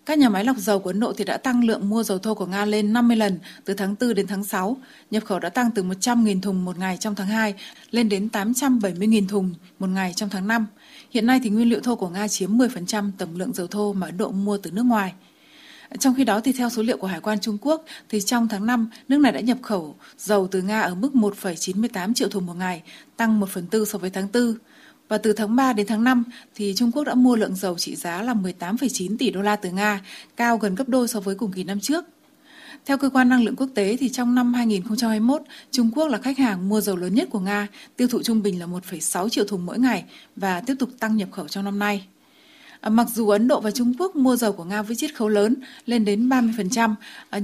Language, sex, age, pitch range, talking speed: Vietnamese, female, 20-39, 200-250 Hz, 250 wpm